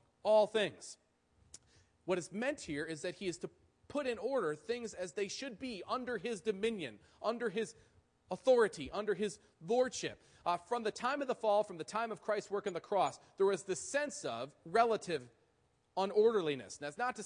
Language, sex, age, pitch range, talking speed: English, male, 40-59, 180-235 Hz, 190 wpm